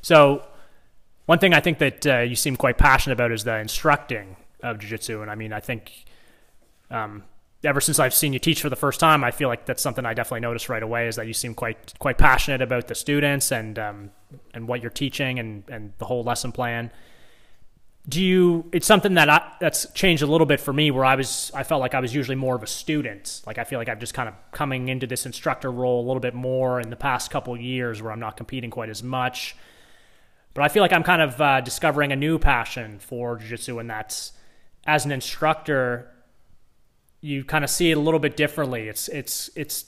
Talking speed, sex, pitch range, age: 230 wpm, male, 120-150 Hz, 20-39